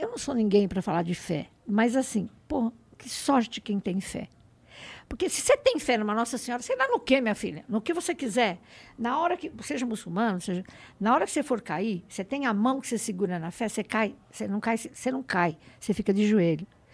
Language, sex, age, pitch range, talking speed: Portuguese, female, 60-79, 215-290 Hz, 235 wpm